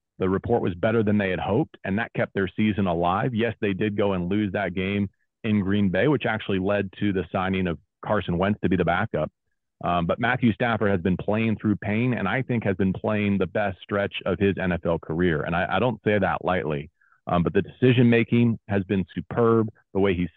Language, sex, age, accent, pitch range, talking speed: English, male, 30-49, American, 100-115 Hz, 225 wpm